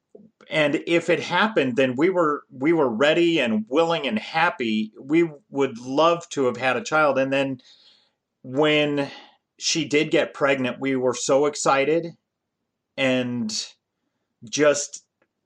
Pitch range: 120-145 Hz